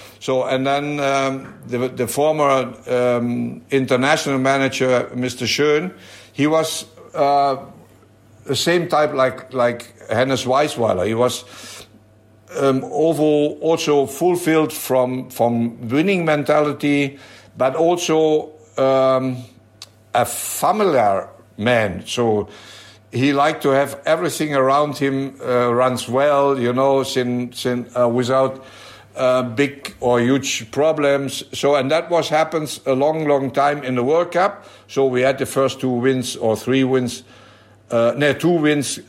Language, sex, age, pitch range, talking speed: English, male, 60-79, 120-145 Hz, 130 wpm